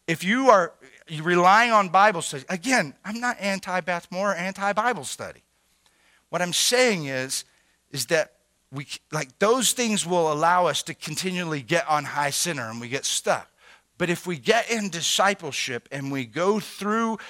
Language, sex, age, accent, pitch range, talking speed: English, male, 40-59, American, 175-230 Hz, 155 wpm